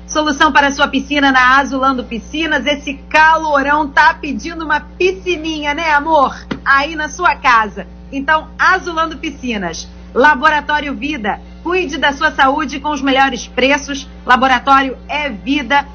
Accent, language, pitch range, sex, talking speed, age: Brazilian, Portuguese, 260-310 Hz, female, 135 wpm, 40-59